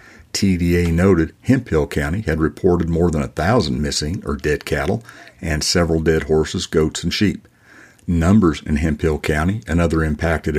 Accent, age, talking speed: American, 50-69, 160 wpm